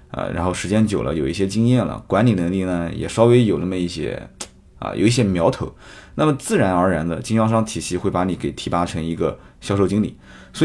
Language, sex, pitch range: Chinese, male, 90-130 Hz